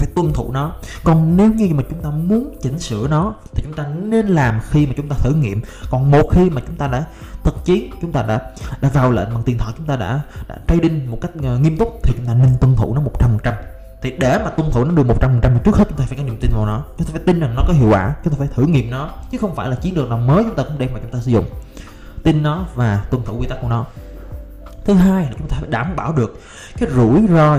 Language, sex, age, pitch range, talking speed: Vietnamese, male, 20-39, 115-160 Hz, 290 wpm